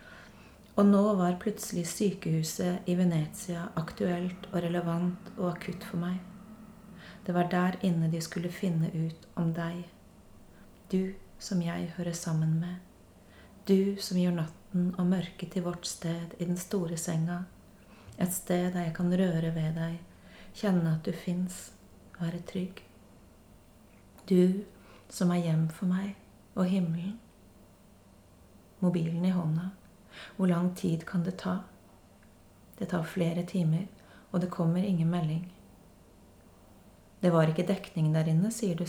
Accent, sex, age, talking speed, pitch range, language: Swedish, female, 30-49, 140 wpm, 165-185 Hz, Danish